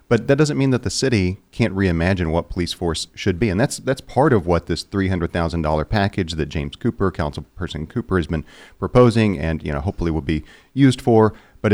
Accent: American